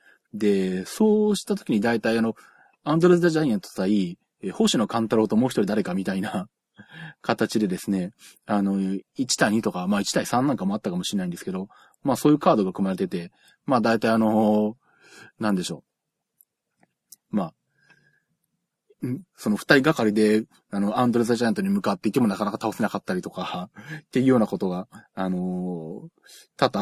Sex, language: male, Japanese